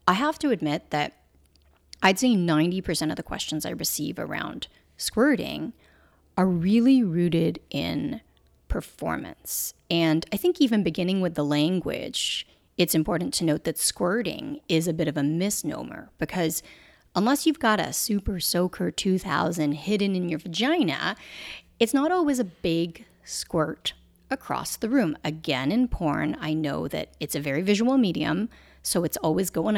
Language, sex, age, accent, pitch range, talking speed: English, female, 30-49, American, 155-205 Hz, 155 wpm